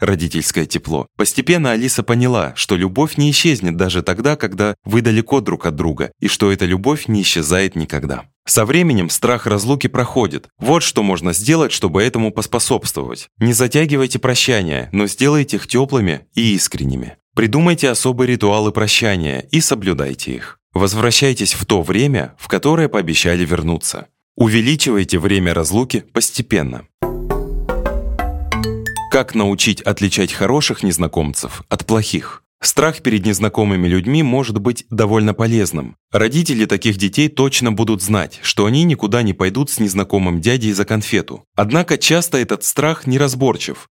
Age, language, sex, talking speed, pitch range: 20-39, Russian, male, 135 wpm, 95-130 Hz